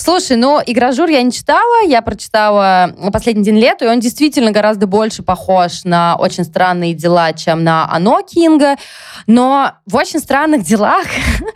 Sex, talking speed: female, 155 wpm